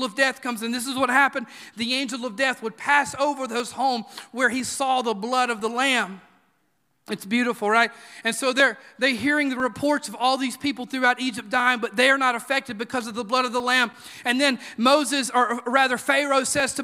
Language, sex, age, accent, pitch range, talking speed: English, male, 40-59, American, 255-310 Hz, 220 wpm